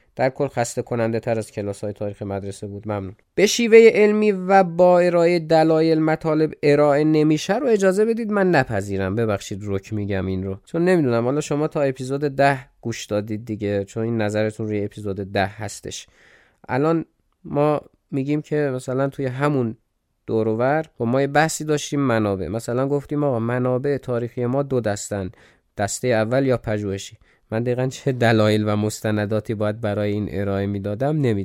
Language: Persian